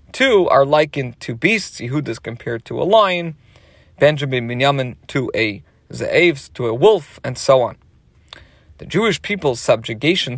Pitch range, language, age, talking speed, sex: 120-170 Hz, English, 40-59, 145 wpm, male